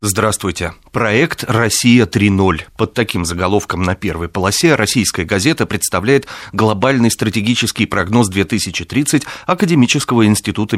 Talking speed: 100 wpm